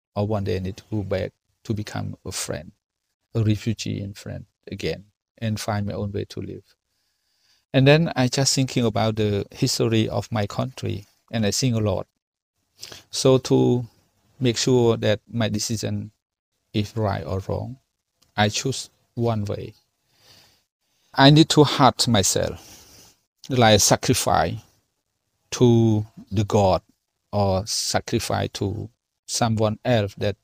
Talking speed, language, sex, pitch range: 140 wpm, English, male, 105-125 Hz